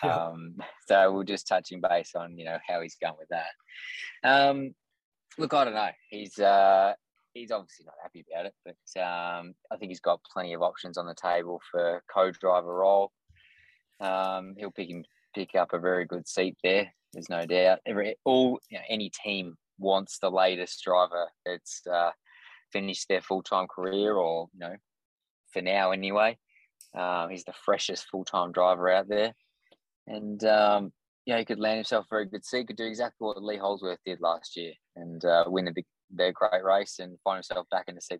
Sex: male